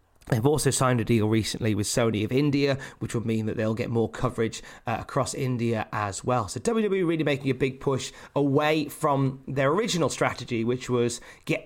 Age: 30-49